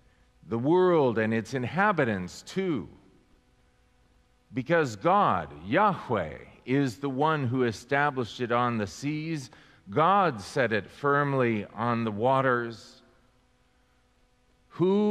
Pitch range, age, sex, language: 110-150 Hz, 40-59, male, English